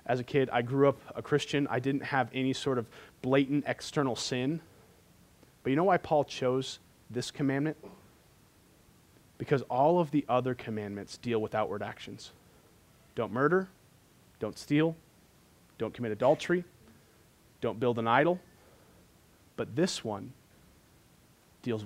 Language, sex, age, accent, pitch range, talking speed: English, male, 30-49, American, 115-140 Hz, 135 wpm